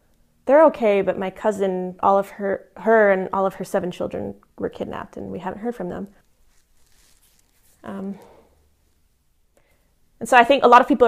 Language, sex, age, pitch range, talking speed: English, female, 20-39, 185-215 Hz, 175 wpm